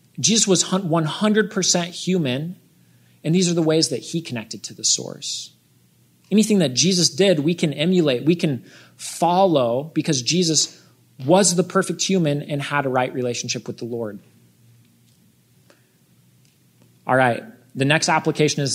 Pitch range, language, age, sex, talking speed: 125-170 Hz, English, 30-49, male, 145 wpm